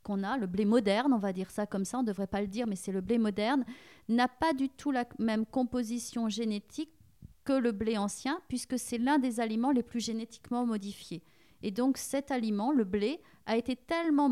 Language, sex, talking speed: French, female, 220 wpm